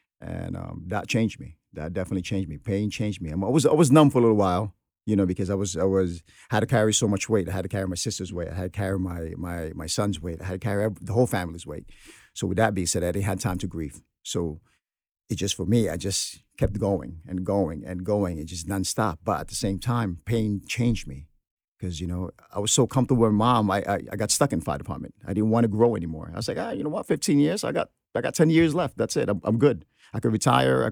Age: 50-69